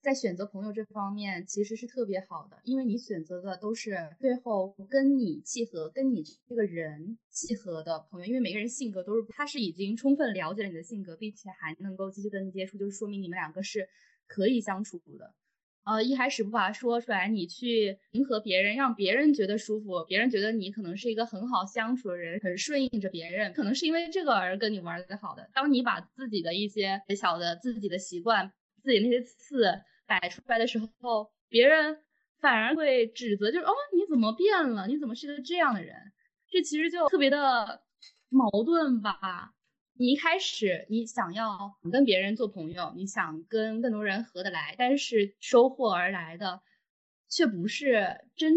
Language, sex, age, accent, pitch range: Chinese, female, 10-29, native, 190-255 Hz